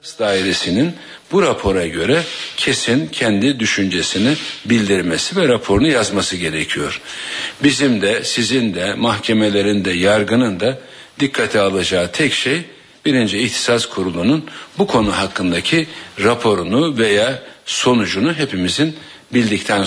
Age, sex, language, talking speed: 60-79, male, Turkish, 105 wpm